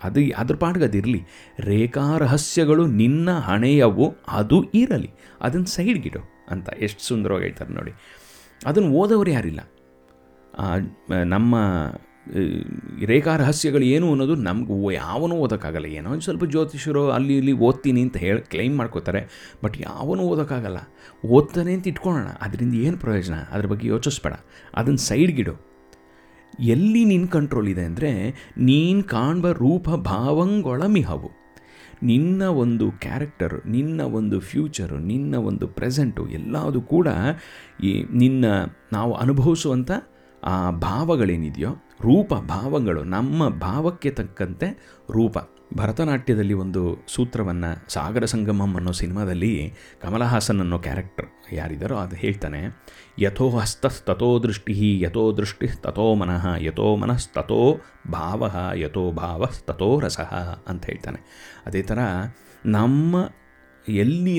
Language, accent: Kannada, native